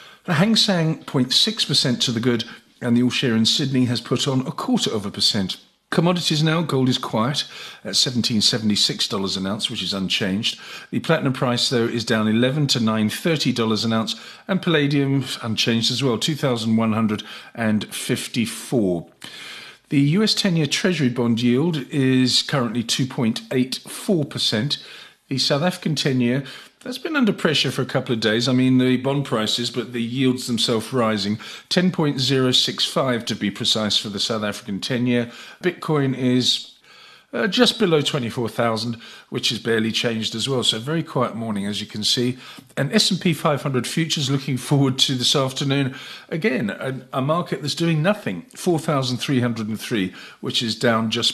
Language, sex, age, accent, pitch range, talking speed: English, male, 50-69, British, 115-150 Hz, 175 wpm